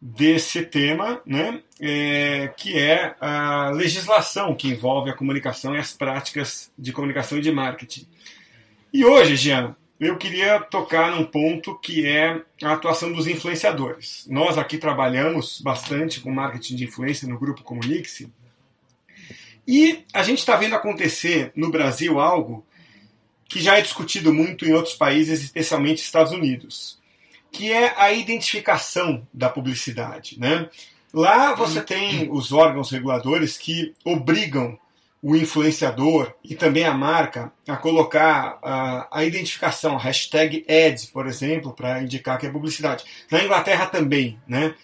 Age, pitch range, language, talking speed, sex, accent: 30-49, 135-165 Hz, Portuguese, 140 wpm, male, Brazilian